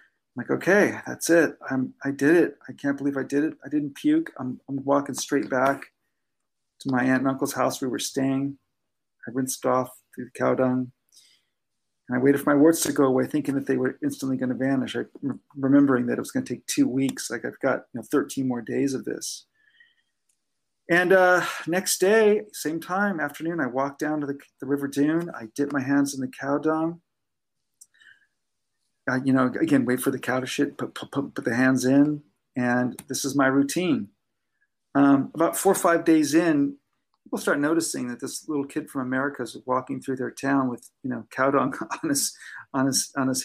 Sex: male